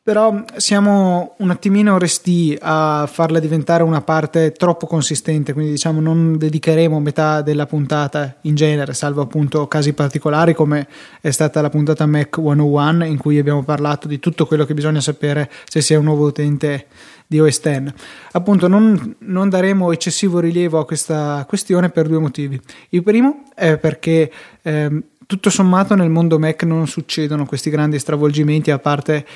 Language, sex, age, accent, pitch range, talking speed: Italian, male, 20-39, native, 150-170 Hz, 165 wpm